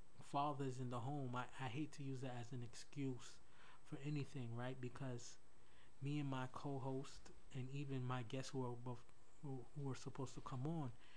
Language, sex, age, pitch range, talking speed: English, male, 20-39, 115-135 Hz, 175 wpm